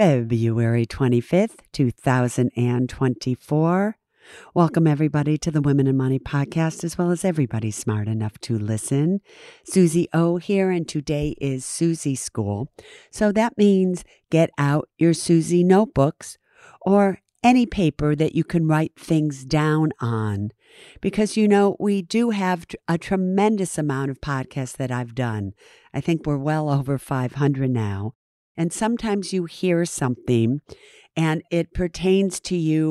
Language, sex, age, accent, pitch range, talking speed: English, female, 50-69, American, 135-180 Hz, 140 wpm